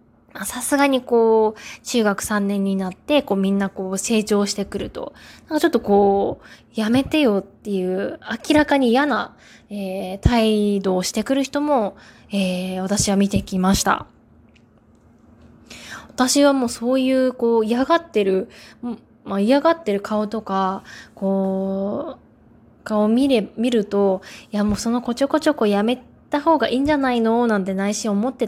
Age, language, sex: 20-39, Japanese, female